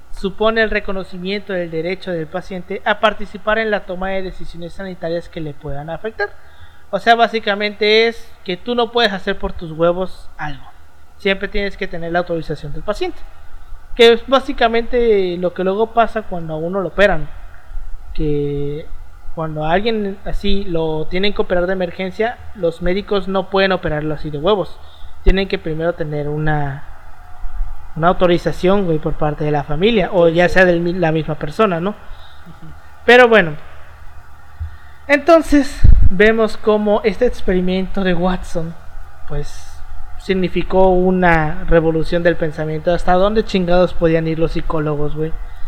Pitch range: 155-205 Hz